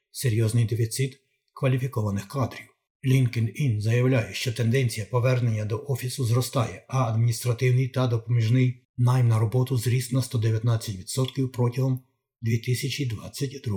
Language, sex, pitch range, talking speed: Ukrainian, male, 115-130 Hz, 105 wpm